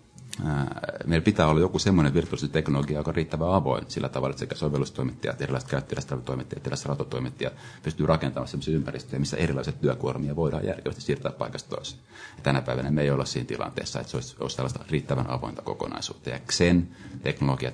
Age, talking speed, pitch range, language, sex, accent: 30-49, 165 wpm, 65-80 Hz, Finnish, male, native